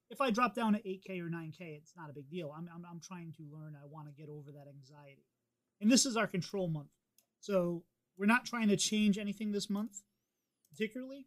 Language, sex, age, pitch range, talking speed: English, male, 30-49, 150-185 Hz, 225 wpm